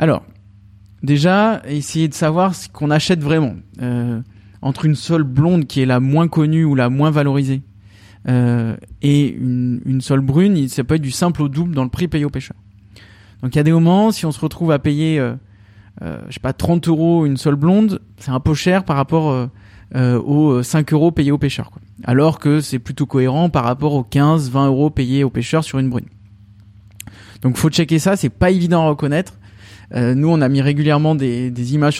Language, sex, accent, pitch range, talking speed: French, male, French, 120-155 Hz, 210 wpm